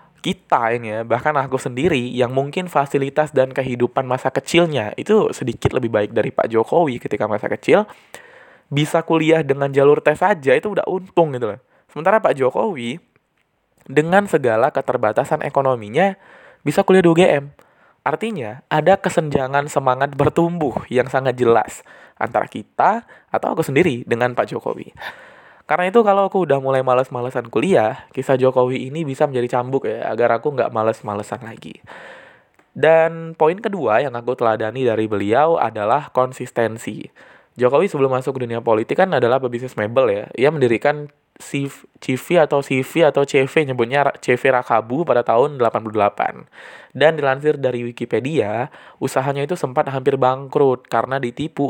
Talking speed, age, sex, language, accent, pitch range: 145 wpm, 20-39, male, Indonesian, native, 120-150 Hz